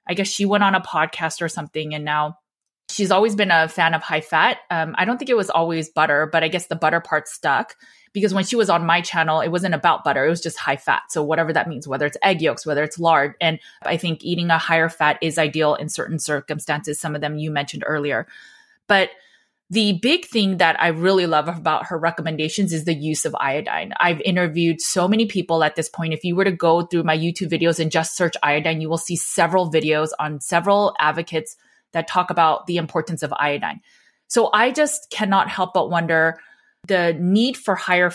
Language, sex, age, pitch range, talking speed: English, female, 20-39, 155-185 Hz, 225 wpm